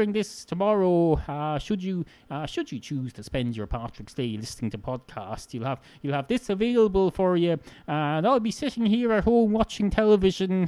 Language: English